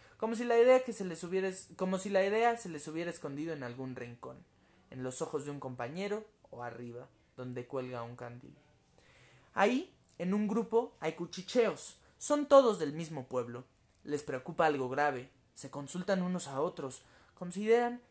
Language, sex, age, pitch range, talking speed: Spanish, male, 20-39, 140-200 Hz, 175 wpm